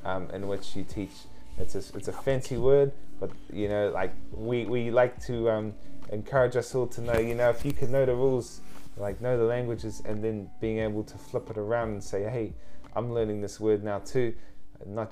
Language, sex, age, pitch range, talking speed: English, male, 20-39, 100-120 Hz, 210 wpm